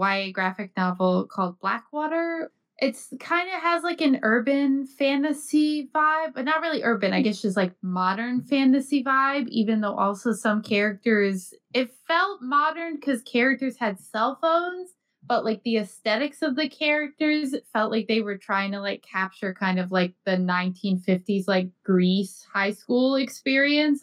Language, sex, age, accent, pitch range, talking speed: English, female, 20-39, American, 190-270 Hz, 155 wpm